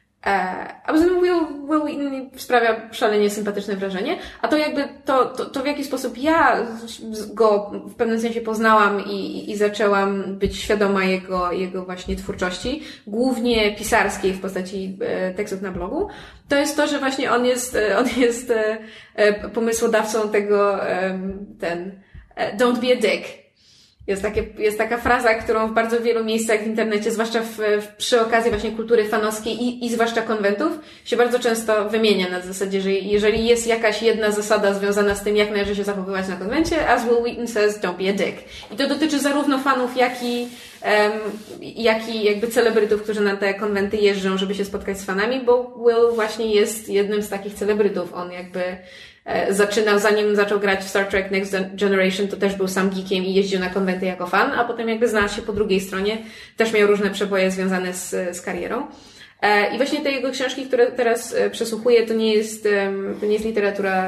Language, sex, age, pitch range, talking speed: Polish, female, 20-39, 200-235 Hz, 180 wpm